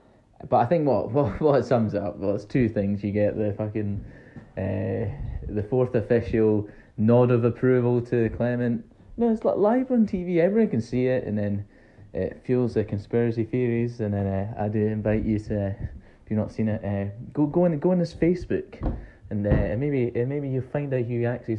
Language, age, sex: English, 20-39, male